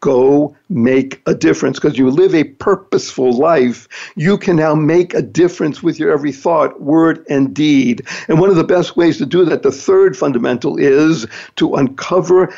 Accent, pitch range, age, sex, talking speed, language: American, 140-200 Hz, 60-79, male, 180 wpm, English